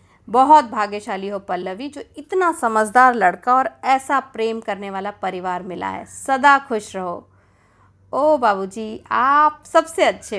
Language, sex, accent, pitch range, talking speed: Hindi, female, native, 195-285 Hz, 140 wpm